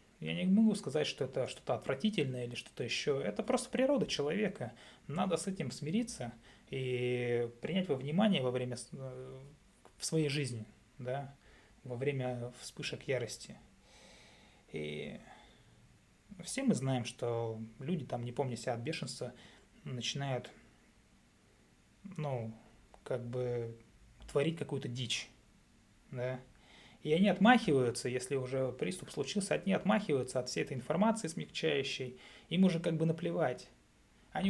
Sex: male